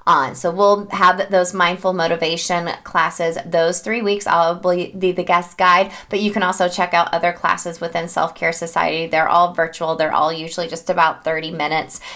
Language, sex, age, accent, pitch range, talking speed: English, female, 20-39, American, 170-200 Hz, 185 wpm